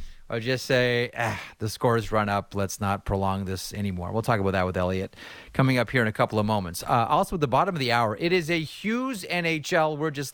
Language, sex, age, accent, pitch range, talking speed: English, male, 30-49, American, 105-140 Hz, 245 wpm